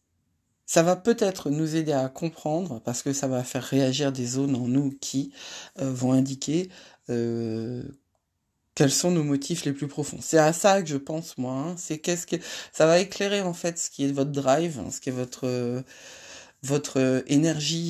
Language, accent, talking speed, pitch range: French, French, 195 wpm, 125-160 Hz